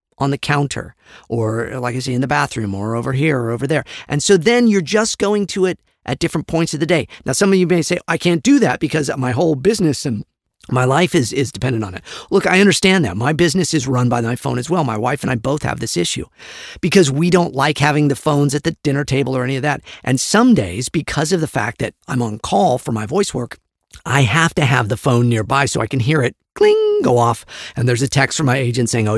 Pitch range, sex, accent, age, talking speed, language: 125-175 Hz, male, American, 50-69, 260 wpm, English